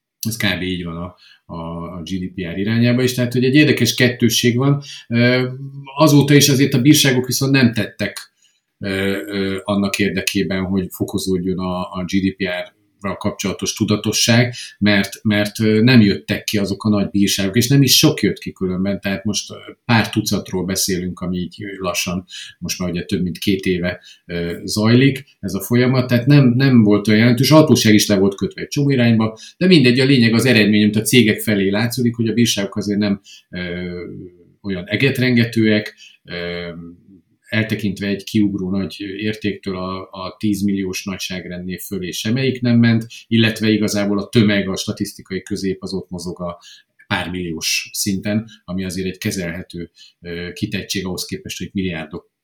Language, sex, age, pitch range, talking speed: Hungarian, male, 50-69, 95-115 Hz, 160 wpm